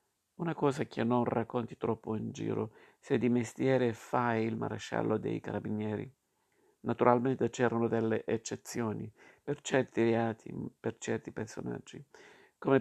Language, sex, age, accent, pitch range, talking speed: Italian, male, 50-69, native, 110-120 Hz, 125 wpm